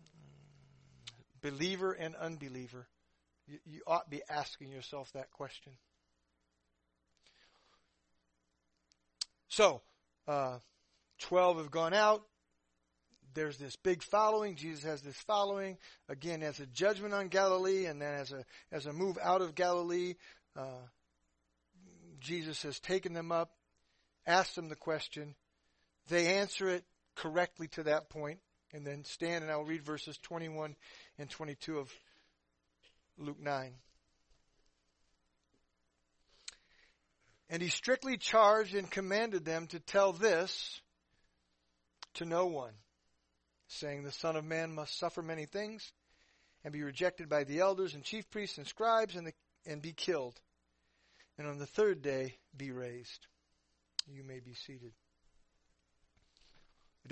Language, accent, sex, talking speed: English, American, male, 125 wpm